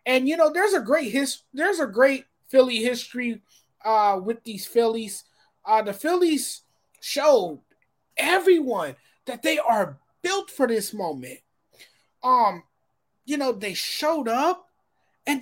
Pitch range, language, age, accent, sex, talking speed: 225-305 Hz, English, 30-49, American, male, 135 wpm